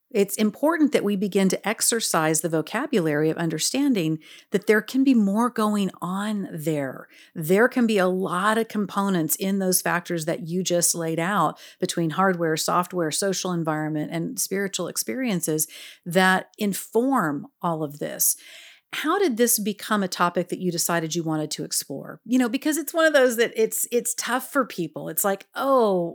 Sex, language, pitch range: female, English, 180-220 Hz